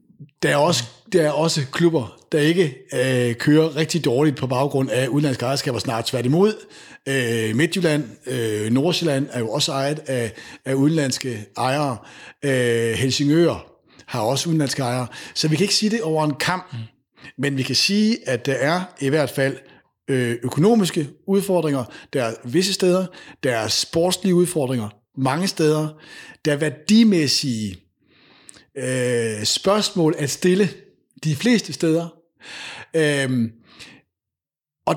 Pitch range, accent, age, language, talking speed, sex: 130-170 Hz, native, 60-79, Danish, 135 wpm, male